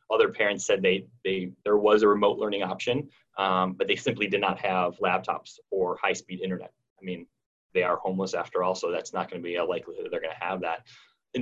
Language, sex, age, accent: English, male, 20-39, American